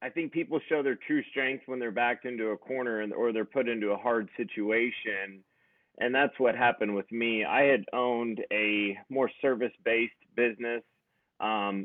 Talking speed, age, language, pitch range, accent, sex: 175 wpm, 30-49, English, 100-120 Hz, American, male